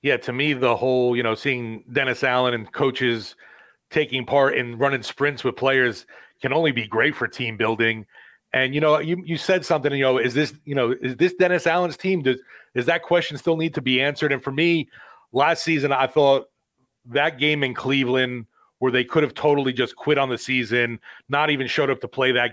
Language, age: English, 30-49